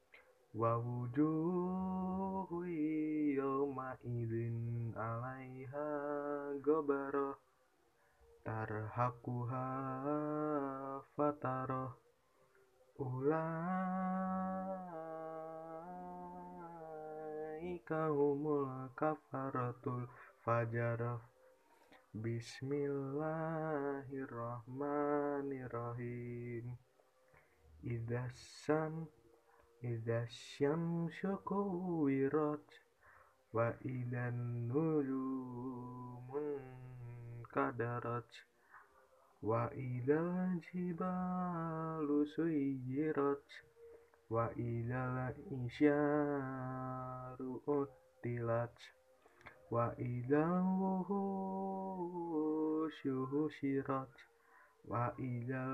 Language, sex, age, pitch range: Indonesian, male, 20-39, 125-155 Hz